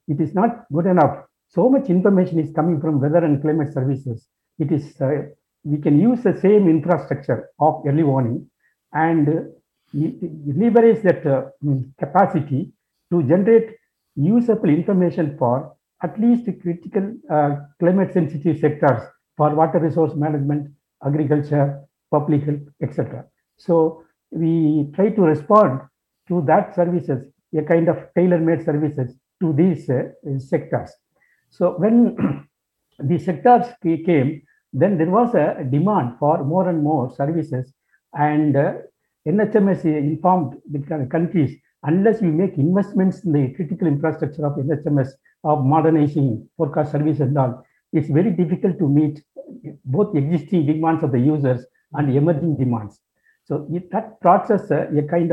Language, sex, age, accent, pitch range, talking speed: English, male, 60-79, Indian, 145-175 Hz, 140 wpm